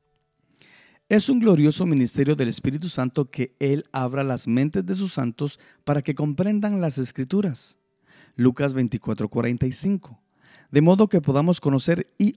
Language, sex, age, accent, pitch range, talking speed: Spanish, male, 50-69, Mexican, 120-160 Hz, 135 wpm